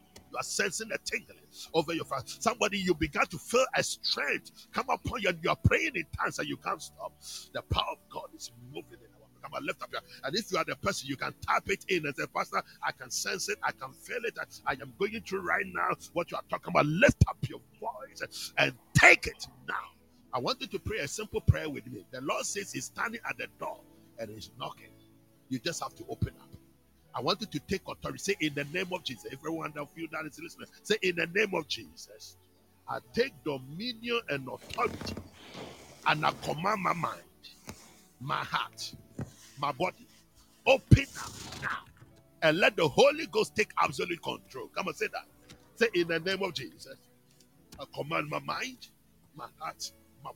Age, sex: 50-69, male